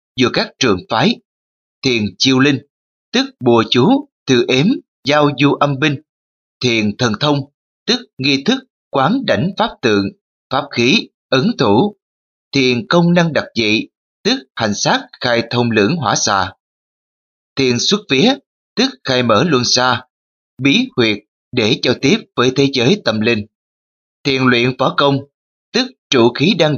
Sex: male